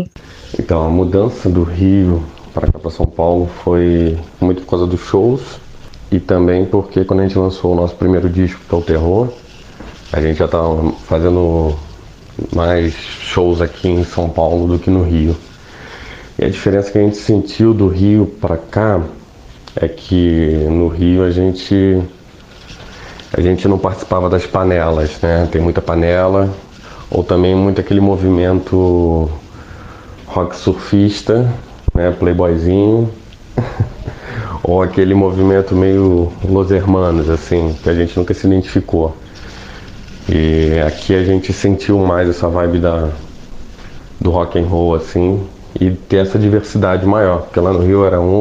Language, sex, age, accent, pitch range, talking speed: Portuguese, male, 30-49, Brazilian, 85-95 Hz, 145 wpm